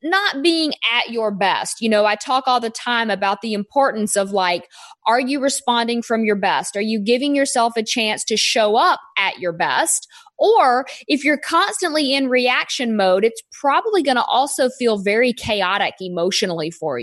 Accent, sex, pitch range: American, female, 210-280 Hz